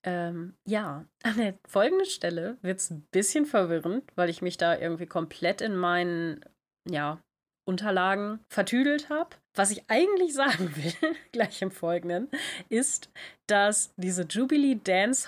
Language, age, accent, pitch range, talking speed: German, 30-49, German, 175-215 Hz, 140 wpm